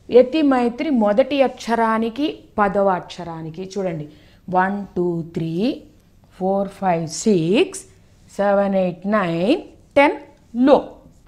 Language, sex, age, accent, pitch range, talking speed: Telugu, female, 30-49, native, 170-270 Hz, 95 wpm